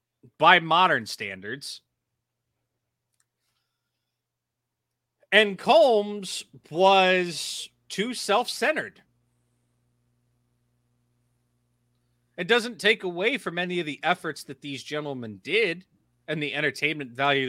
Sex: male